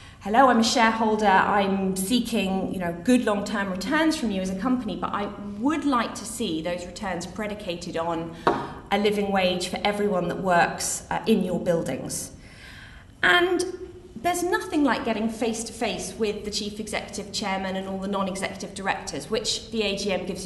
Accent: British